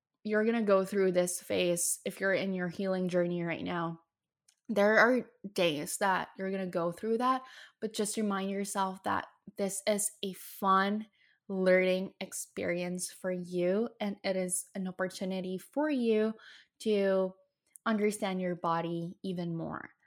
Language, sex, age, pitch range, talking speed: English, female, 10-29, 180-205 Hz, 155 wpm